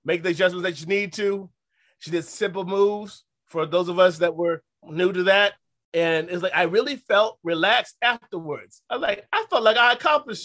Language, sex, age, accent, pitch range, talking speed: English, male, 30-49, American, 145-185 Hz, 205 wpm